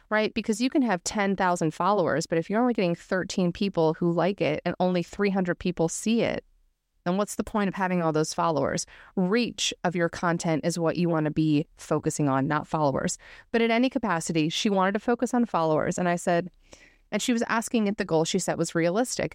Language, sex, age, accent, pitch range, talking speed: English, female, 30-49, American, 165-215 Hz, 215 wpm